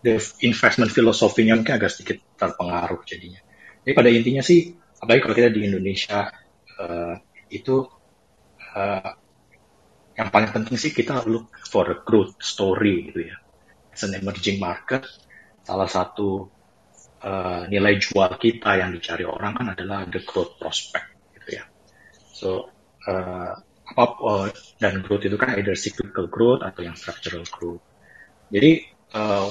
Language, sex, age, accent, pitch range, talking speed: Indonesian, male, 30-49, native, 95-115 Hz, 135 wpm